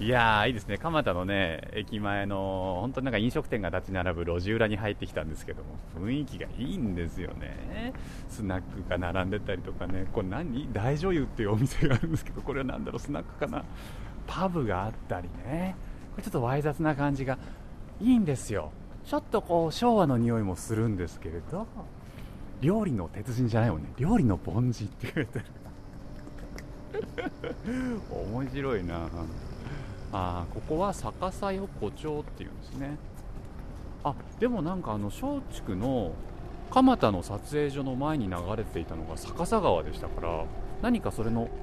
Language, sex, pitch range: Japanese, male, 90-135 Hz